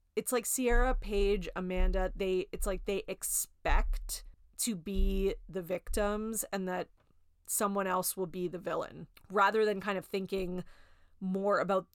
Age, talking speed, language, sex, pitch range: 30-49, 145 wpm, English, female, 185-215 Hz